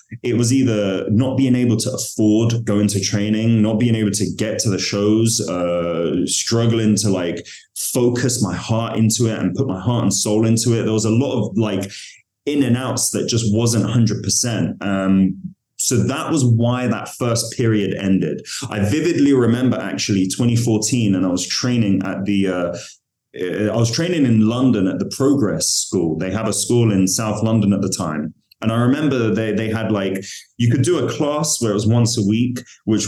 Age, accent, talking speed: 20-39, British, 200 wpm